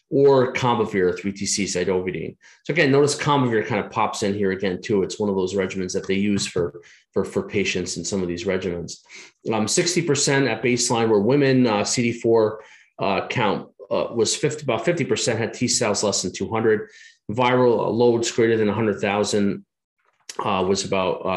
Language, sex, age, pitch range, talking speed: English, male, 30-49, 105-130 Hz, 165 wpm